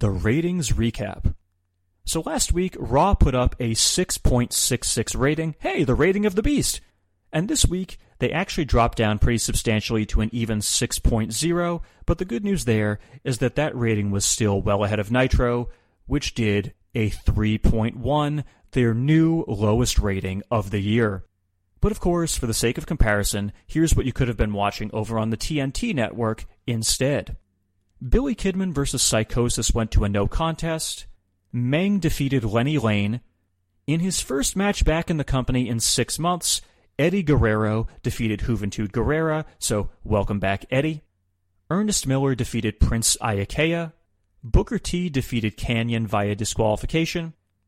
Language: English